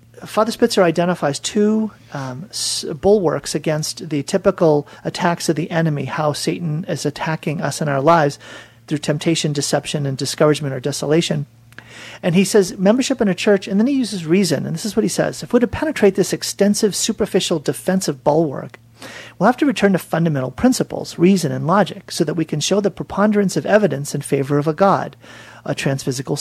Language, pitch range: English, 145-195 Hz